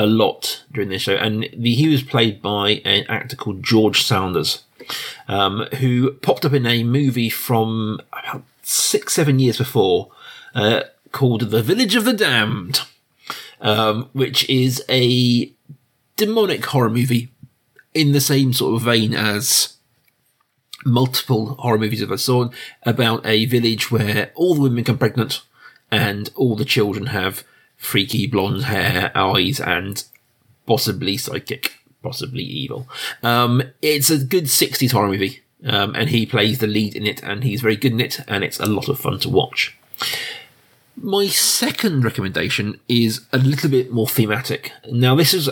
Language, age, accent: English, 40-59, British